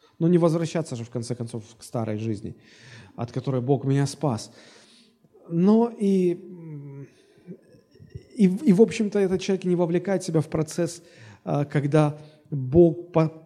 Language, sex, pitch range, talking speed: Russian, male, 130-170 Hz, 135 wpm